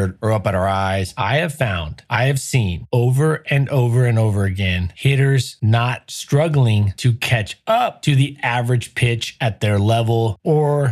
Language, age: English, 30-49